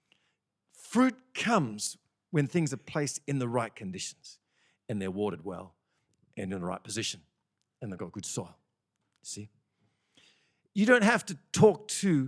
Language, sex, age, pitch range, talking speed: English, male, 50-69, 115-190 Hz, 150 wpm